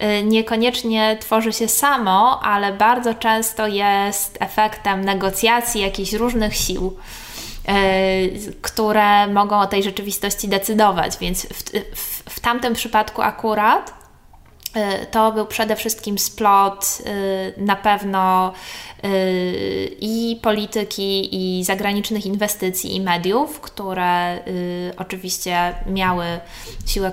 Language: Polish